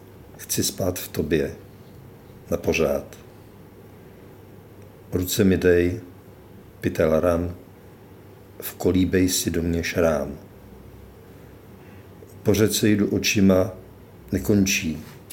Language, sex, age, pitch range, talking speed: Czech, male, 50-69, 95-105 Hz, 80 wpm